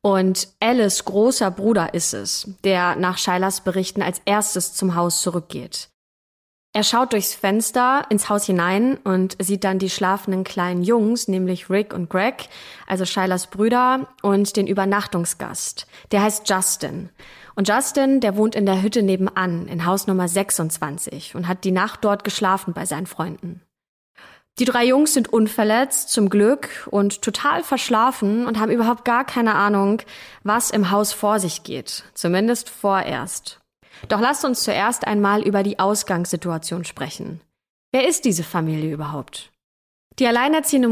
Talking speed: 150 wpm